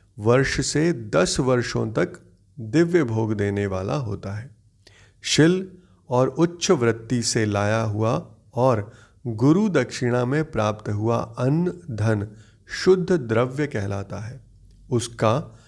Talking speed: 120 wpm